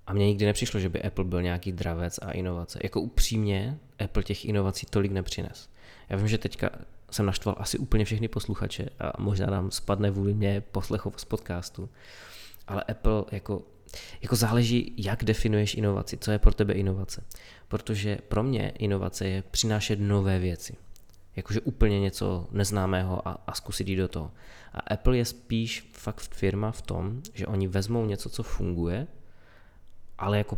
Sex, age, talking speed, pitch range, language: male, 20-39, 165 wpm, 95-110 Hz, Czech